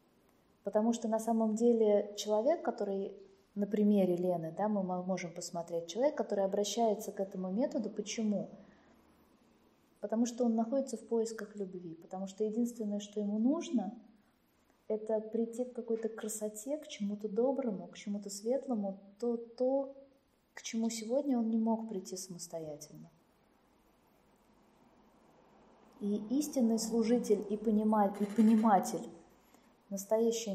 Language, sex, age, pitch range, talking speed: Russian, female, 20-39, 195-230 Hz, 120 wpm